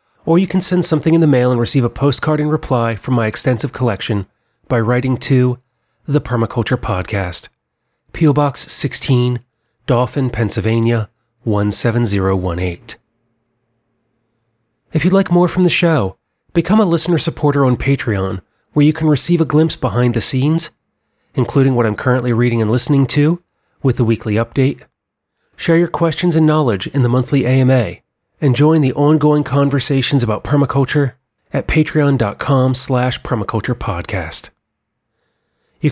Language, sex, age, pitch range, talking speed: English, male, 30-49, 115-150 Hz, 140 wpm